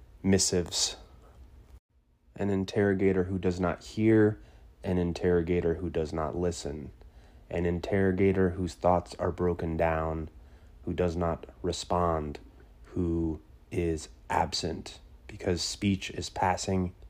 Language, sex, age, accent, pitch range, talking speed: English, male, 30-49, American, 80-95 Hz, 110 wpm